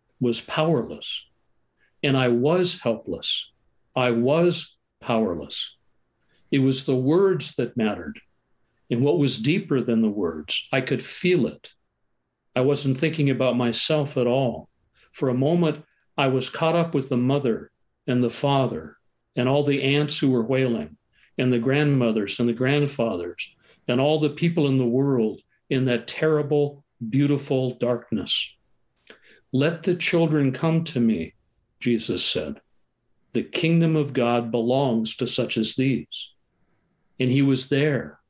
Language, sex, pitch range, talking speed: English, male, 125-145 Hz, 145 wpm